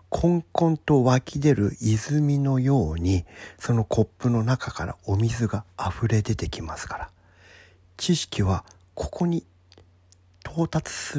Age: 40-59